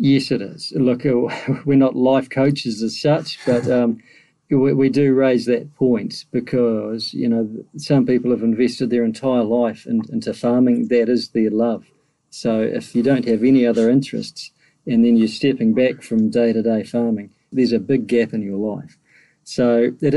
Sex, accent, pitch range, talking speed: male, Australian, 115-140 Hz, 180 wpm